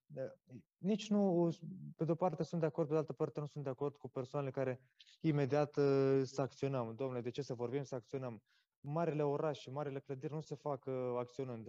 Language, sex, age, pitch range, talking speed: Romanian, male, 20-39, 130-150 Hz, 200 wpm